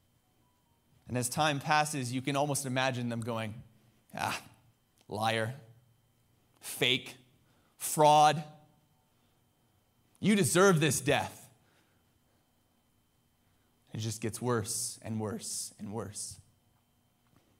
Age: 30-49